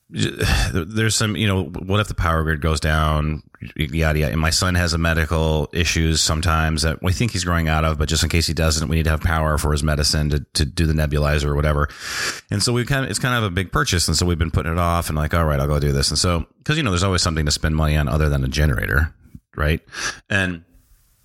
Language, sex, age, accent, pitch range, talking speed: English, male, 30-49, American, 80-100 Hz, 265 wpm